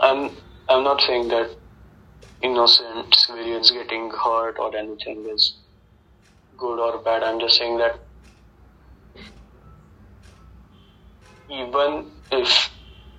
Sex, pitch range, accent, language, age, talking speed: male, 90-115 Hz, Indian, English, 20-39, 95 wpm